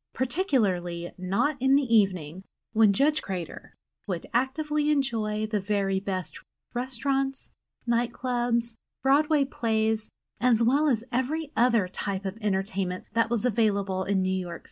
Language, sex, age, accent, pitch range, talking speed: English, female, 30-49, American, 200-265 Hz, 130 wpm